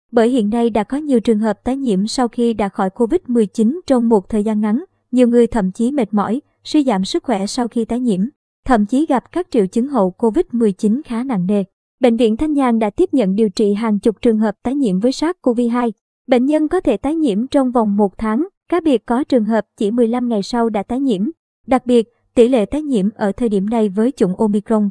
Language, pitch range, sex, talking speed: Vietnamese, 215-270 Hz, male, 235 wpm